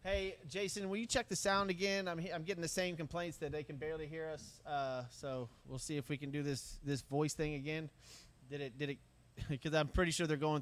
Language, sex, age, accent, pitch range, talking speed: English, male, 30-49, American, 150-205 Hz, 250 wpm